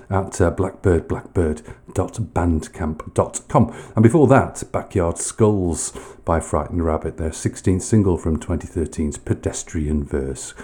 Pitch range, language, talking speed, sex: 80-110 Hz, English, 100 wpm, male